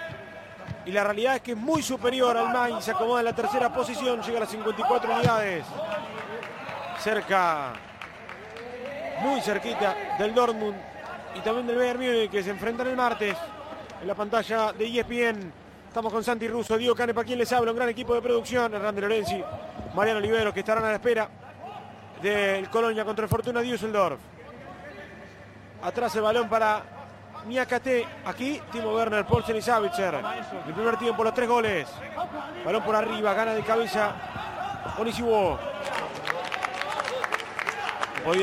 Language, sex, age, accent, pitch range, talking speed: Spanish, male, 30-49, Argentinian, 215-240 Hz, 150 wpm